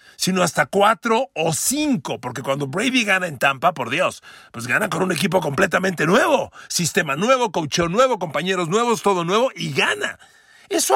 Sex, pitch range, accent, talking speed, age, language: male, 150-220 Hz, Mexican, 170 wpm, 50-69, Spanish